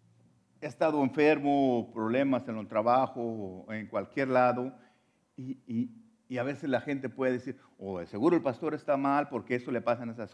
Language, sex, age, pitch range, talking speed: English, male, 50-69, 115-195 Hz, 180 wpm